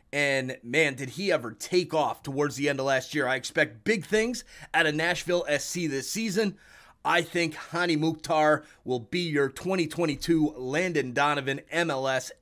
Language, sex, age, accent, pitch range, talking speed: English, male, 30-49, American, 130-175 Hz, 165 wpm